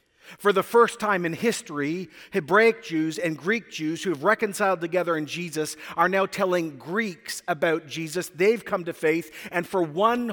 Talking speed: 175 wpm